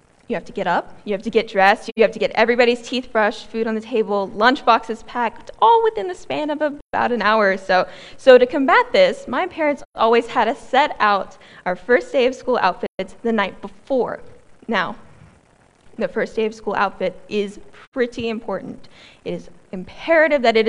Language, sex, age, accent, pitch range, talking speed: English, female, 10-29, American, 200-250 Hz, 200 wpm